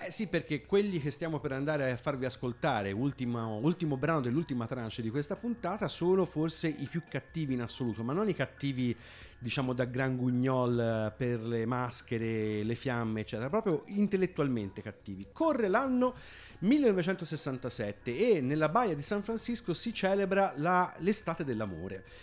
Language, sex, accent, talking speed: Italian, male, native, 155 wpm